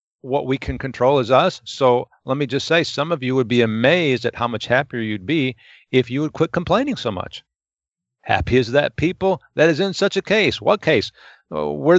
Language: English